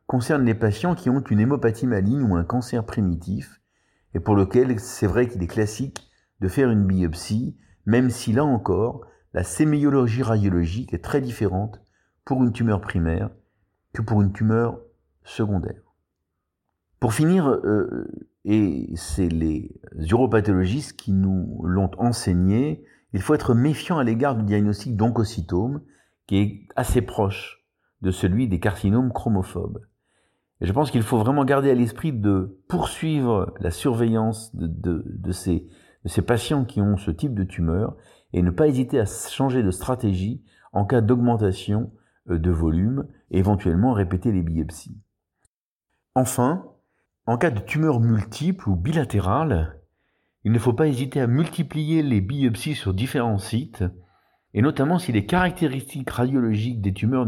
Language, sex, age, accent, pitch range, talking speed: French, male, 50-69, French, 95-125 Hz, 150 wpm